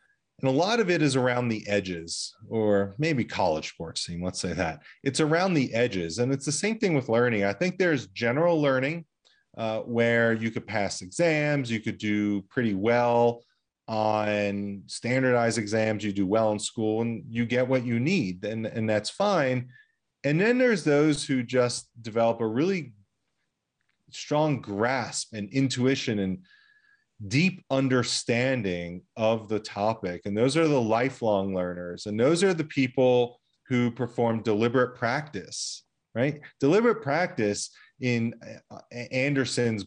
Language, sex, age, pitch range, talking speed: English, male, 30-49, 105-140 Hz, 150 wpm